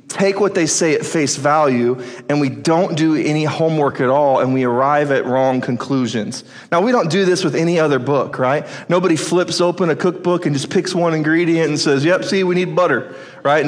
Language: English